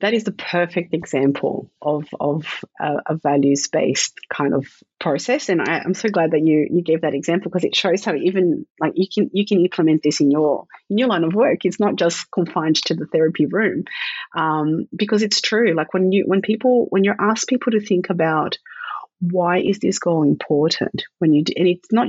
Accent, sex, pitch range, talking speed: Australian, female, 155-190 Hz, 215 wpm